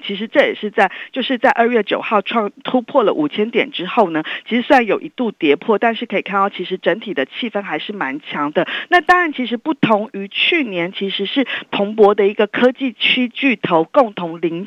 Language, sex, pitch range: Chinese, female, 190-255 Hz